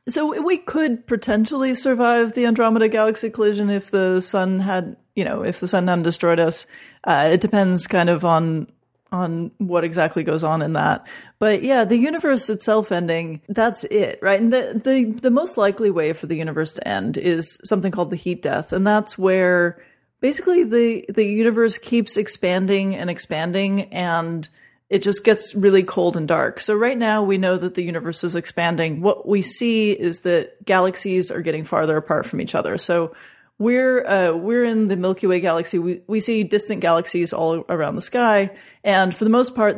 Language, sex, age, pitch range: English, female, 30-49, 175-220 Hz